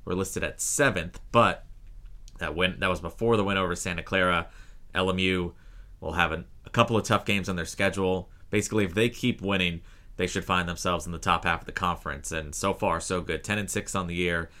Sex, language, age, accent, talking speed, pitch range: male, English, 30-49, American, 220 wpm, 85-100 Hz